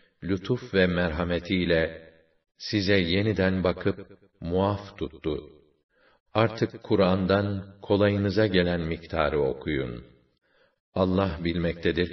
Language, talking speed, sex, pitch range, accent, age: Turkish, 80 wpm, male, 85-100 Hz, native, 50-69